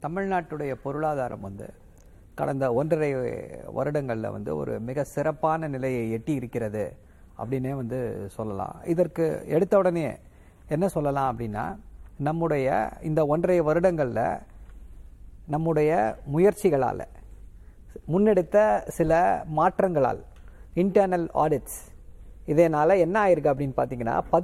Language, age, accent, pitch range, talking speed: Tamil, 50-69, native, 140-195 Hz, 95 wpm